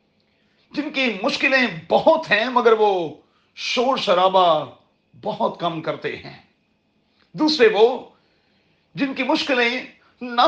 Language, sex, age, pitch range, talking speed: Urdu, male, 40-59, 180-245 Hz, 110 wpm